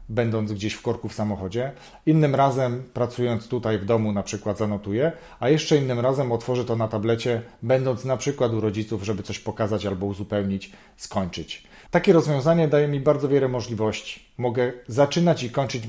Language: Polish